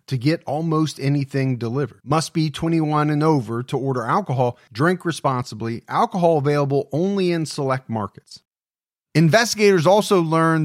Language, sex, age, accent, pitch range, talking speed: English, male, 30-49, American, 125-160 Hz, 135 wpm